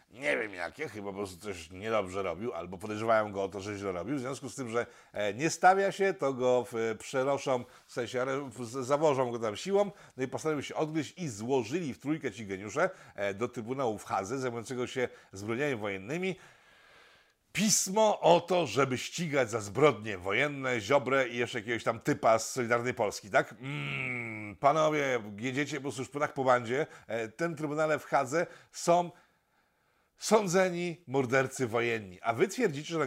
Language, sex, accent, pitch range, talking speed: Polish, male, native, 115-150 Hz, 170 wpm